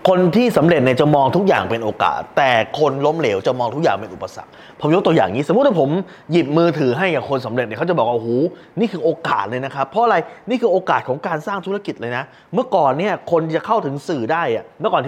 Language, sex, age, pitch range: Thai, male, 20-39, 160-225 Hz